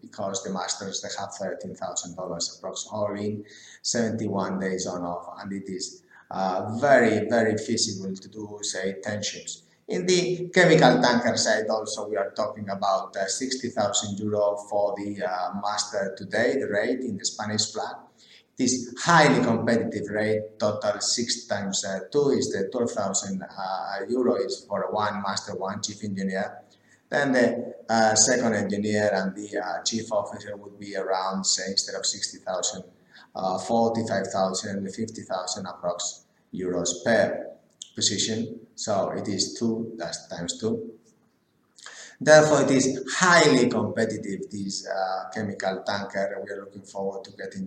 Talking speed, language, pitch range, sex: 145 wpm, English, 95-115 Hz, male